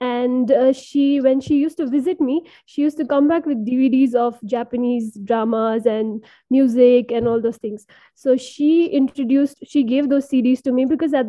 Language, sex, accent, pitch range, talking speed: English, female, Indian, 245-280 Hz, 190 wpm